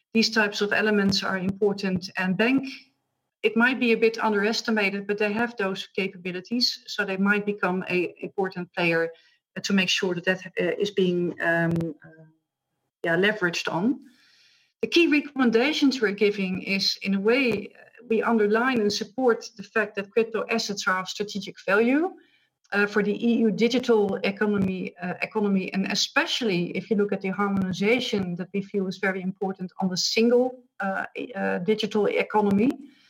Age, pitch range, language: 40-59, 190-225 Hz, English